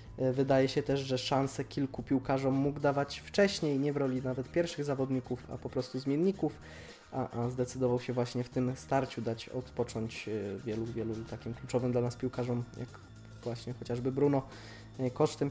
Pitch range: 120-145 Hz